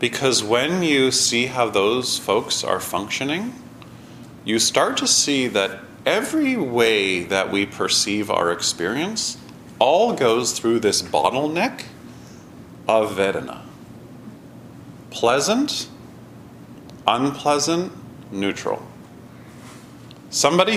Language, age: English, 40-59